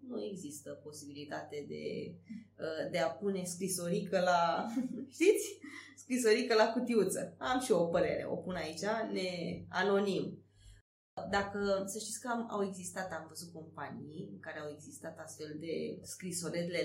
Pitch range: 155-200 Hz